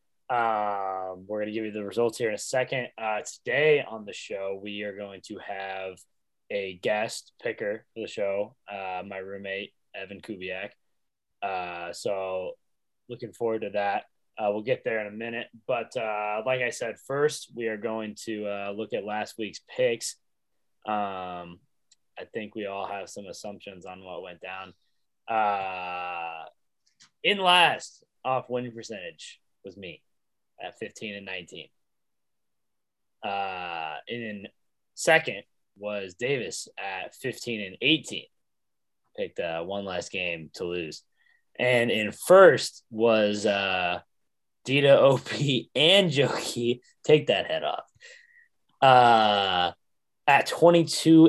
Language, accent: English, American